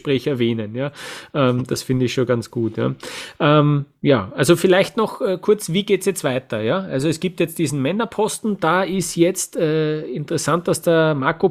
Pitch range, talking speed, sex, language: 135-175 Hz, 195 wpm, male, German